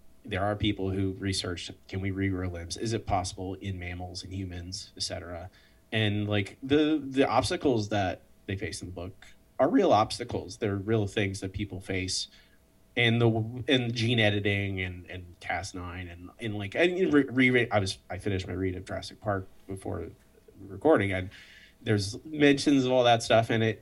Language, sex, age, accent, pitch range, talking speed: English, male, 30-49, American, 95-115 Hz, 175 wpm